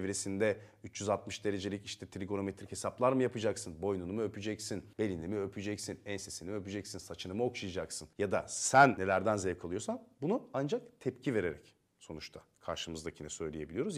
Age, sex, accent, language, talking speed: 40-59, male, native, Turkish, 140 wpm